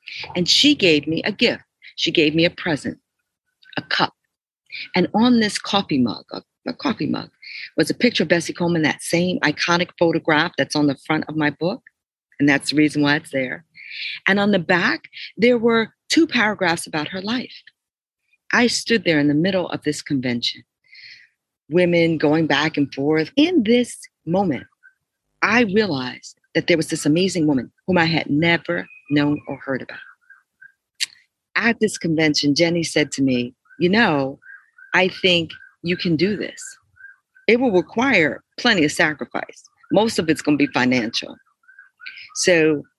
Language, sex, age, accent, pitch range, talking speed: English, female, 50-69, American, 150-235 Hz, 165 wpm